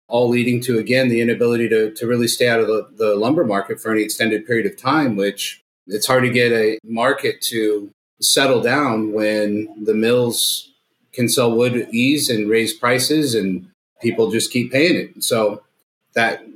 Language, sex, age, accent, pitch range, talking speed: English, male, 30-49, American, 110-140 Hz, 180 wpm